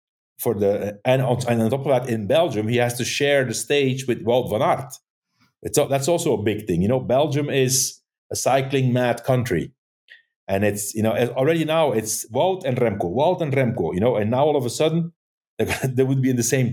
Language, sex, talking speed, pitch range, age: English, male, 215 wpm, 105-135 Hz, 50-69